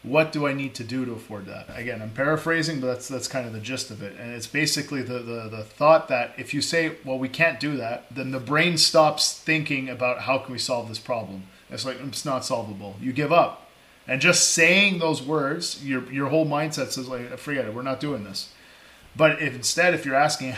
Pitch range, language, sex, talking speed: 125-155 Hz, English, male, 235 wpm